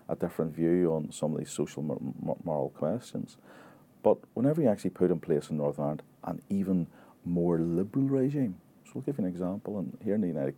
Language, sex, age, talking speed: English, male, 40-59, 205 wpm